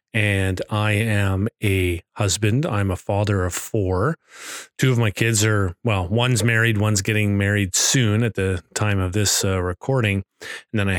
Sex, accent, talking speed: male, American, 175 wpm